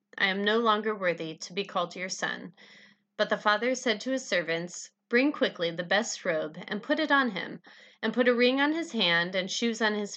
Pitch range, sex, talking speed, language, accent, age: 190-245 Hz, female, 225 wpm, English, American, 30-49